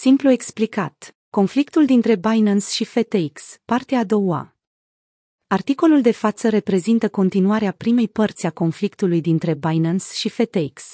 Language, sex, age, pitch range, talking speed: Romanian, female, 30-49, 175-220 Hz, 125 wpm